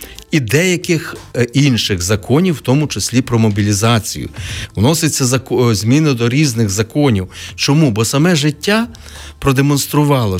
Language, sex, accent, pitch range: Ukrainian, male, native, 105-140 Hz